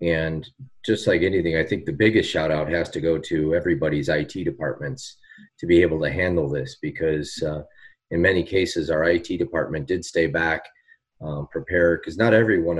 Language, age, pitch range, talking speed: English, 30-49, 75-90 Hz, 190 wpm